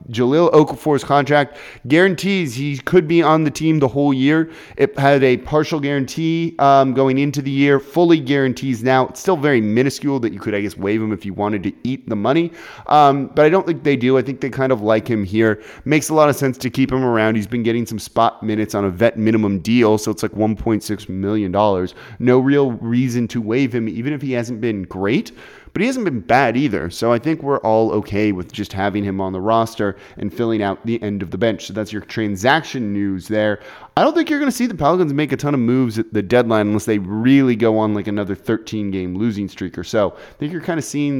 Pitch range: 110-145 Hz